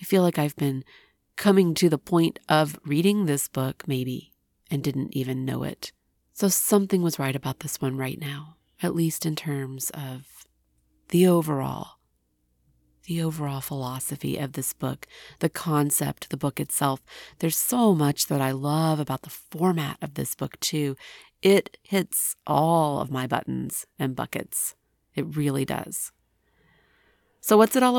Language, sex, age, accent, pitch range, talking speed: English, female, 40-59, American, 135-170 Hz, 160 wpm